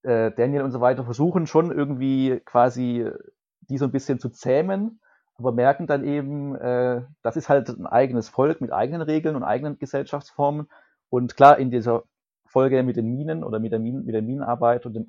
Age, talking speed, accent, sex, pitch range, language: 30-49, 180 wpm, German, male, 120-140 Hz, German